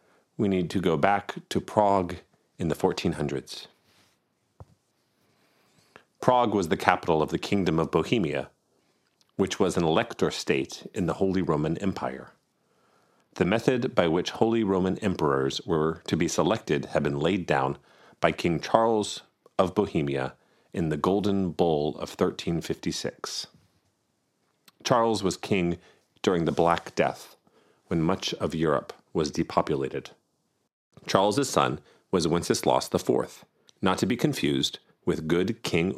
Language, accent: English, American